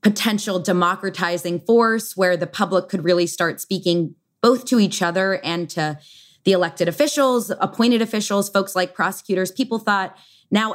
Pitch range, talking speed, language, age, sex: 170-205 Hz, 150 wpm, English, 20-39, female